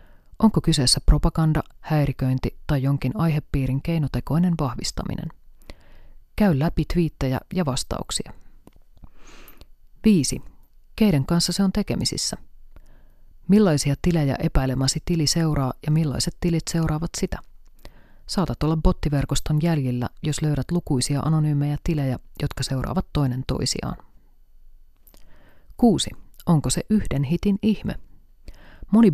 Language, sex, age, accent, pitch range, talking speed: Finnish, female, 30-49, native, 135-170 Hz, 105 wpm